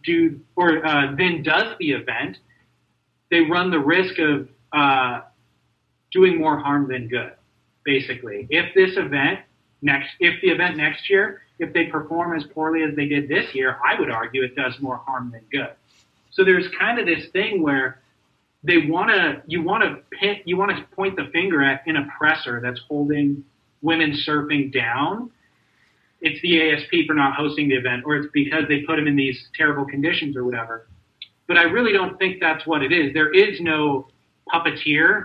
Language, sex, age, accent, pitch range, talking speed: English, male, 30-49, American, 135-165 Hz, 180 wpm